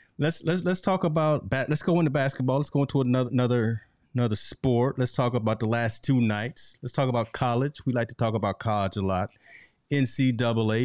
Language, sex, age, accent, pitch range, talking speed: English, male, 30-49, American, 105-130 Hz, 205 wpm